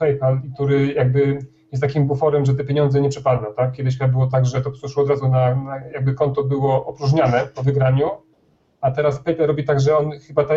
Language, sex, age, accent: Polish, male, 30-49, native